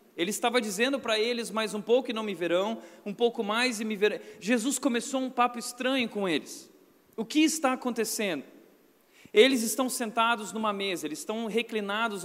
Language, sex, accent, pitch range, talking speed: Portuguese, male, Brazilian, 195-235 Hz, 180 wpm